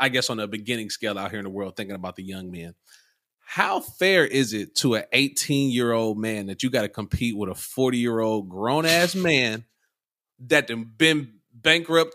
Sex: male